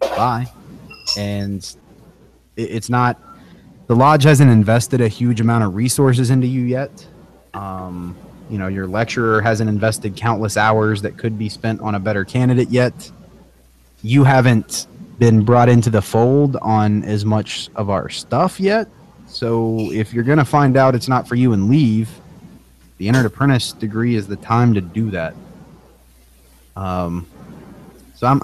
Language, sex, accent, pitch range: English, male, American, 95-120 Hz